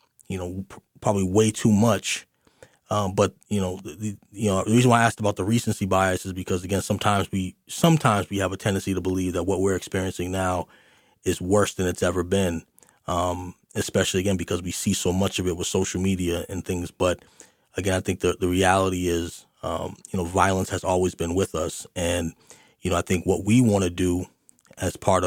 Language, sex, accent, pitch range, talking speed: English, male, American, 90-100 Hz, 210 wpm